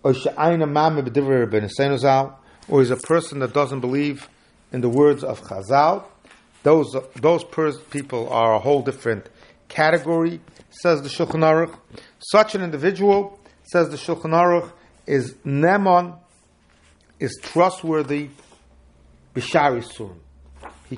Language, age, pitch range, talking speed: English, 50-69, 130-165 Hz, 105 wpm